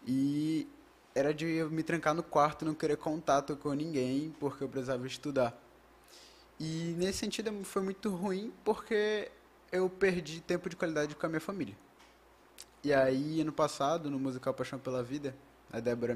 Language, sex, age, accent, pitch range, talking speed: Portuguese, male, 20-39, Brazilian, 130-165 Hz, 160 wpm